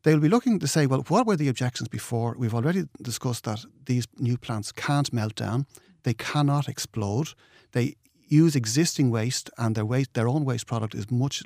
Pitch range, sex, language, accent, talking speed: 115-150 Hz, male, English, Irish, 200 wpm